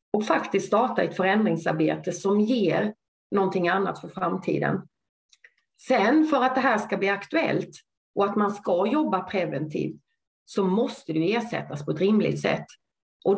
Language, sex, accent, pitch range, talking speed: Swedish, female, native, 195-250 Hz, 155 wpm